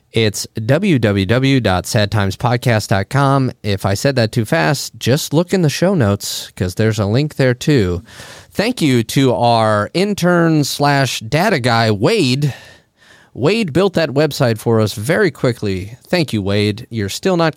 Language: English